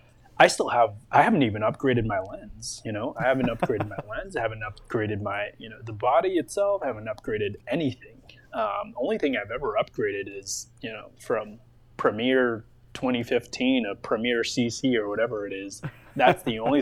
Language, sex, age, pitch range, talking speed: English, male, 20-39, 110-135 Hz, 180 wpm